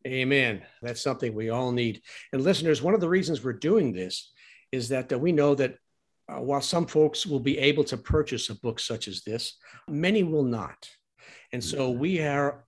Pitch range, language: 120-170 Hz, English